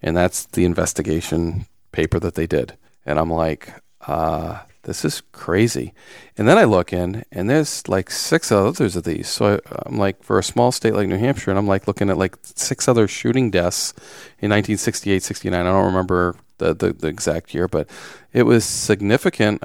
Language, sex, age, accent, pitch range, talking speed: English, male, 40-59, American, 90-105 Hz, 190 wpm